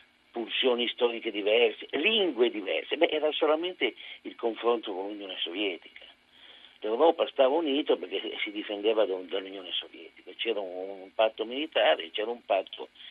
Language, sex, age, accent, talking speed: Italian, male, 50-69, native, 130 wpm